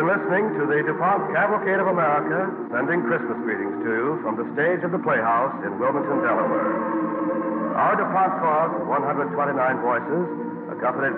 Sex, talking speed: male, 155 wpm